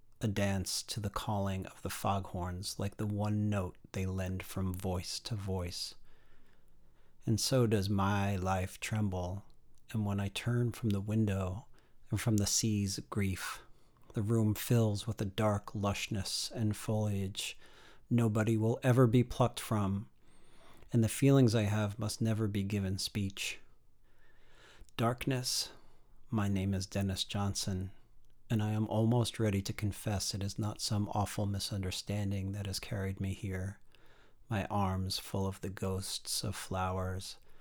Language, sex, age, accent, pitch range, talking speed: English, male, 40-59, American, 95-115 Hz, 150 wpm